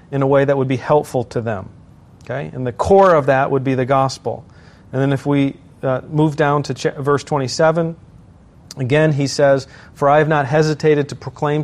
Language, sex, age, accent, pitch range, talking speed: English, male, 40-59, American, 130-155 Hz, 200 wpm